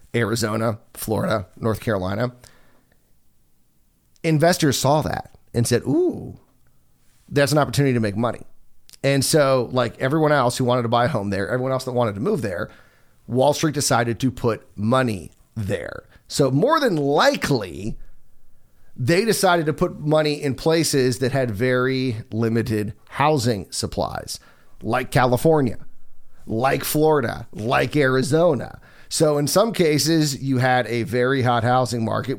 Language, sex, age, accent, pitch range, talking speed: English, male, 40-59, American, 115-150 Hz, 140 wpm